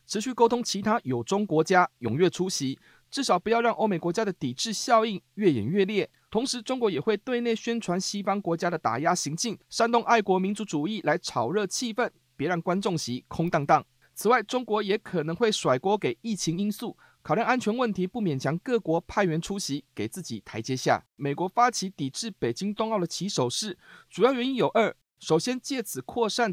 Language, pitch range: Chinese, 160-225 Hz